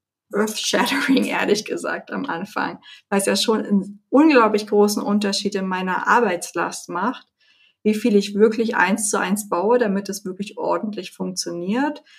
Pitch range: 195-230 Hz